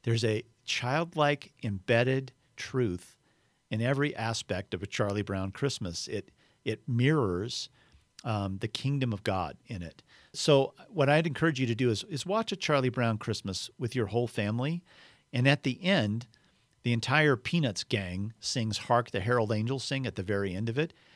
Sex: male